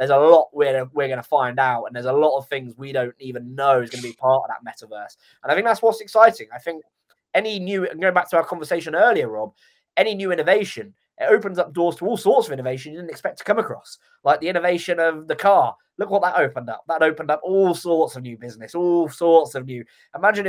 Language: English